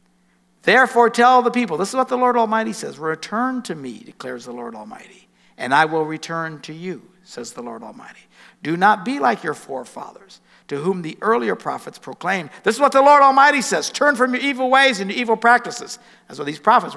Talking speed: 210 wpm